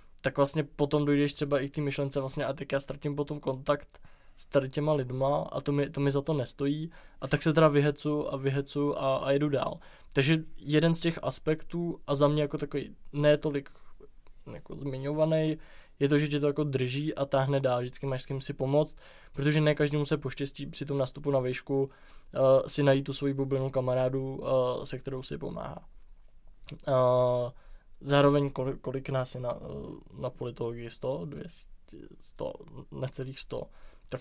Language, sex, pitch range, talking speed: Czech, male, 130-145 Hz, 180 wpm